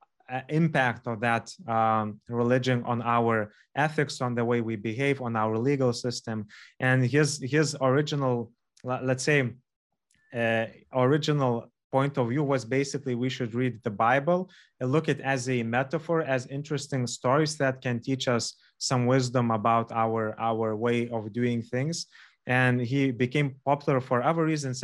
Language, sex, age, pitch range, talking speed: English, male, 20-39, 115-135 Hz, 155 wpm